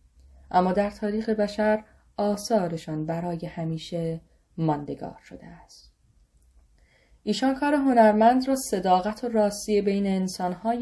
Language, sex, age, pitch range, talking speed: Persian, female, 10-29, 165-215 Hz, 105 wpm